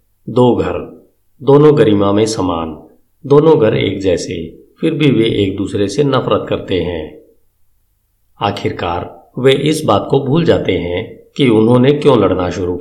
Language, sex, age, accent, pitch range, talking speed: Hindi, male, 50-69, native, 95-135 Hz, 155 wpm